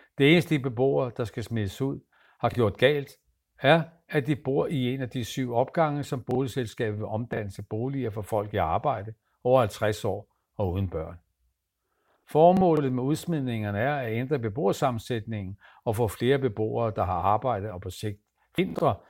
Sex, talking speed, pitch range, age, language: male, 170 wpm, 100-130 Hz, 60-79, Danish